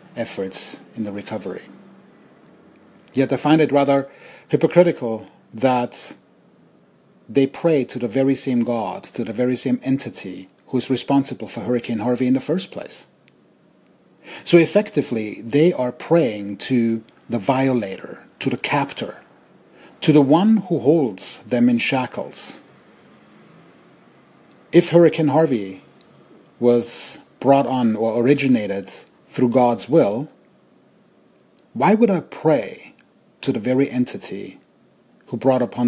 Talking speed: 125 wpm